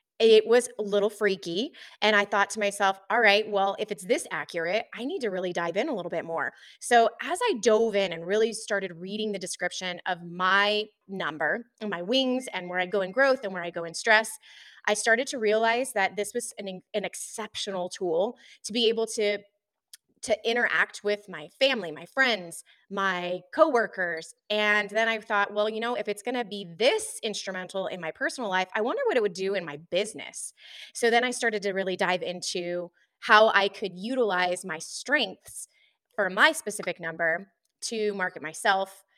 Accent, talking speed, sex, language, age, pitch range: American, 195 wpm, female, English, 20-39, 190-230 Hz